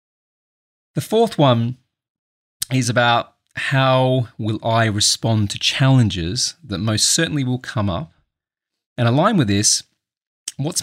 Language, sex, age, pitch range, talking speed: English, male, 30-49, 100-135 Hz, 120 wpm